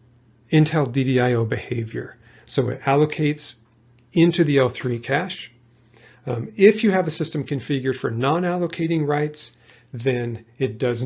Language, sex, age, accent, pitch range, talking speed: English, male, 40-59, American, 120-150 Hz, 125 wpm